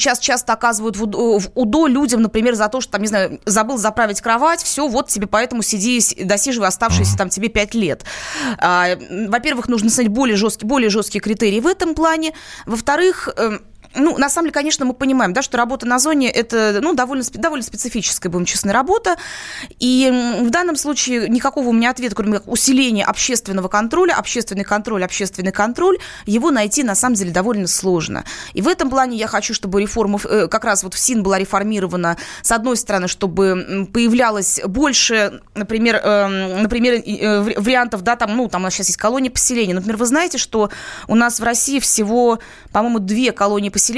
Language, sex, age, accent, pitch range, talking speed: Russian, female, 20-39, native, 205-250 Hz, 180 wpm